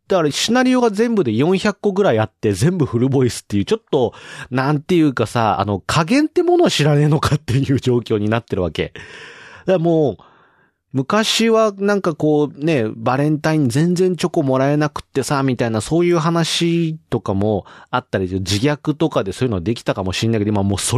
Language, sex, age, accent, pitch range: Japanese, male, 40-59, native, 115-180 Hz